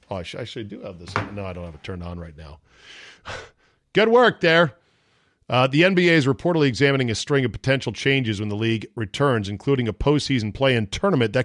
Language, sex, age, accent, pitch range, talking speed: English, male, 40-59, American, 105-140 Hz, 215 wpm